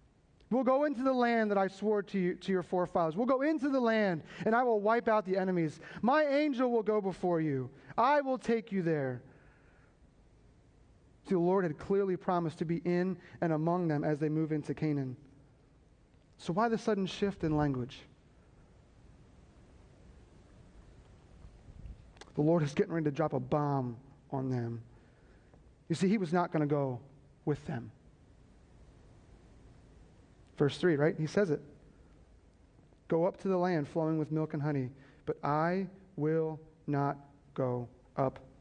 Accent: American